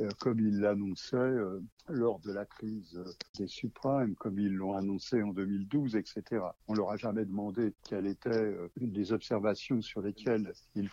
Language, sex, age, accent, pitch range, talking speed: French, male, 60-79, French, 105-135 Hz, 160 wpm